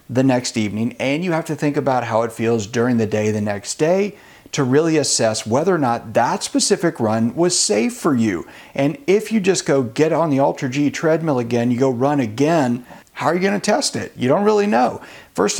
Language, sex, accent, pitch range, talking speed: English, male, American, 110-165 Hz, 220 wpm